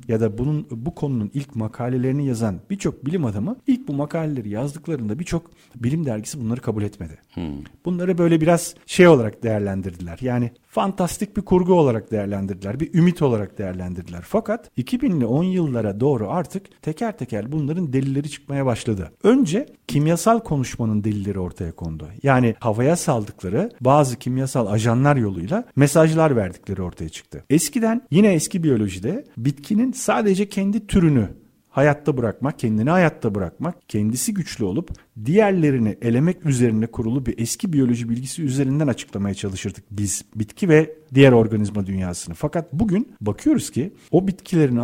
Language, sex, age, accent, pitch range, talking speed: Turkish, male, 40-59, native, 110-170 Hz, 140 wpm